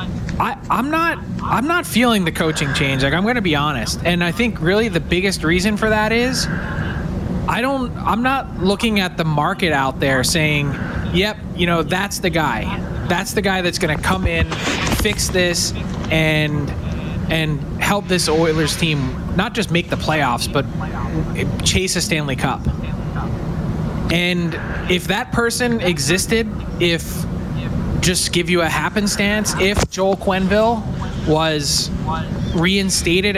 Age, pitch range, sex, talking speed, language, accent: 20-39, 155-205 Hz, male, 145 wpm, English, American